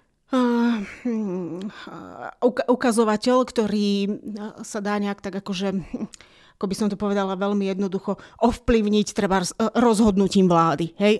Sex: female